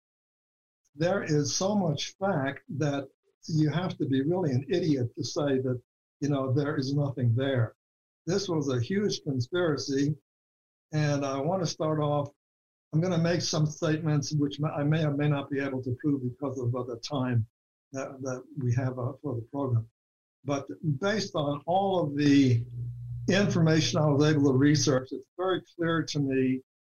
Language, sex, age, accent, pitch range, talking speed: English, male, 60-79, American, 125-150 Hz, 175 wpm